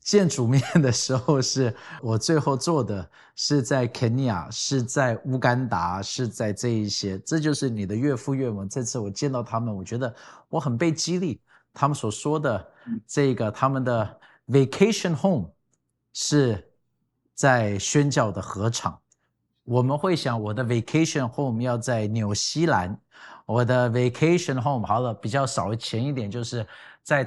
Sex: male